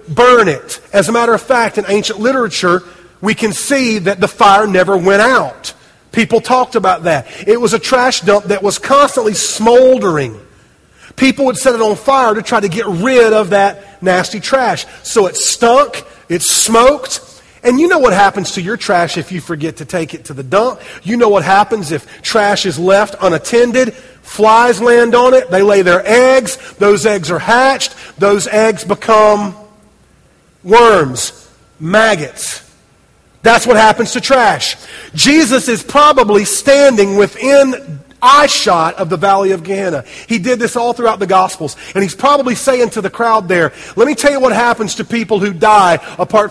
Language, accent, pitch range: English, American, 195-240 Hz